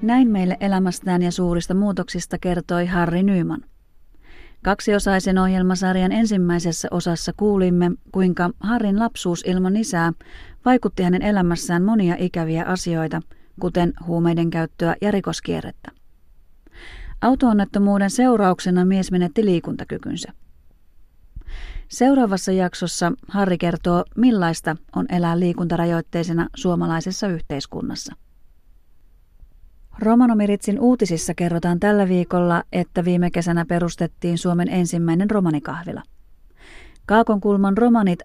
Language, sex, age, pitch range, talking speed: Finnish, female, 30-49, 170-195 Hz, 95 wpm